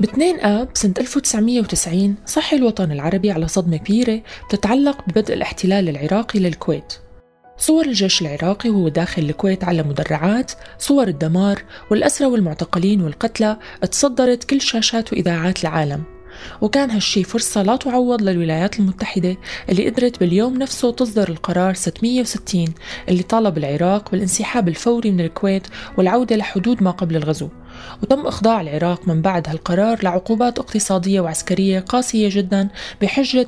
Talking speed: 130 wpm